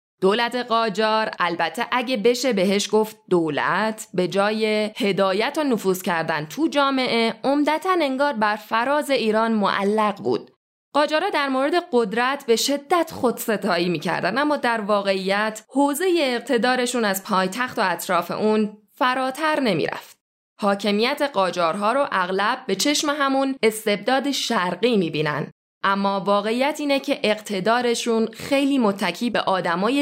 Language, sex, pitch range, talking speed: Persian, female, 195-270 Hz, 125 wpm